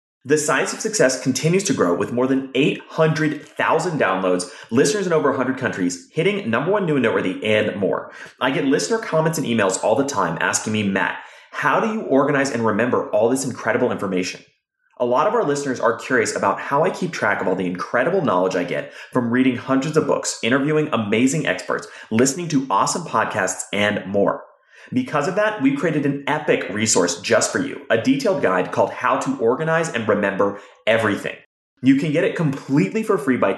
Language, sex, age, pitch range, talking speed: English, male, 30-49, 120-160 Hz, 195 wpm